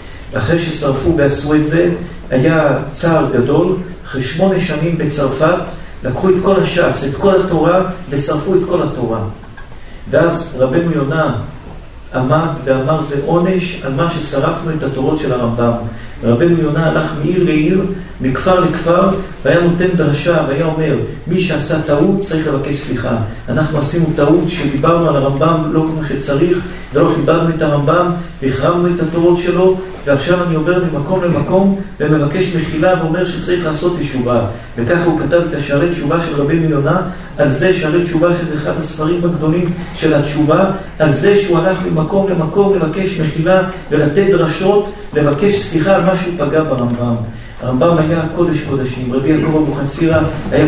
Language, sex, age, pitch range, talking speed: Hebrew, male, 40-59, 145-175 Hz, 150 wpm